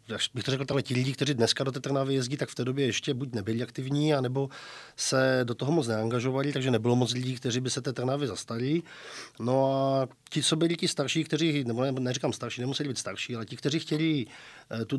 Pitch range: 110-130 Hz